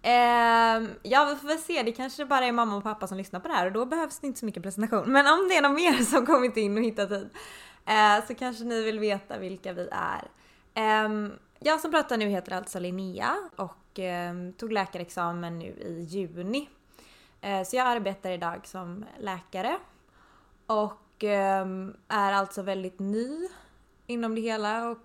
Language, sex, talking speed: Swedish, female, 175 wpm